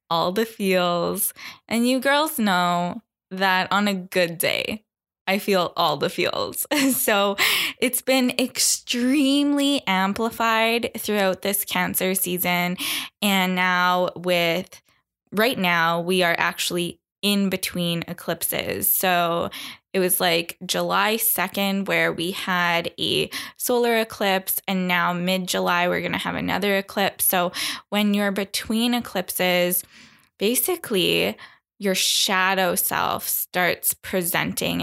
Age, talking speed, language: 10-29, 120 wpm, English